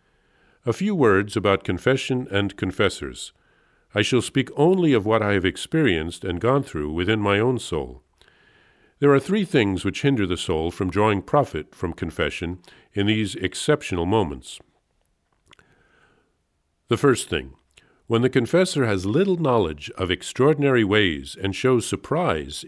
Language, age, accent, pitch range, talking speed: English, 50-69, American, 90-130 Hz, 145 wpm